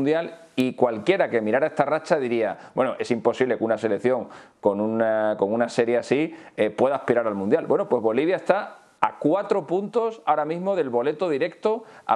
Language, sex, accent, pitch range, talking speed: Spanish, male, Spanish, 120-145 Hz, 185 wpm